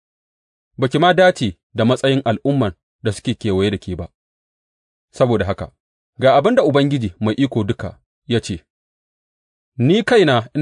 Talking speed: 125 wpm